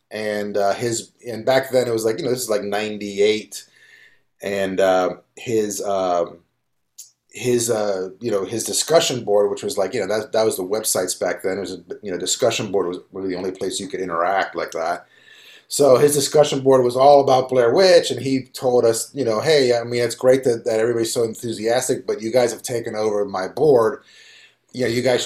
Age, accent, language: 30-49, American, English